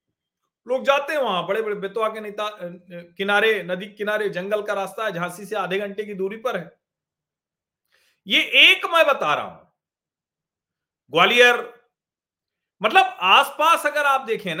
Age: 40-59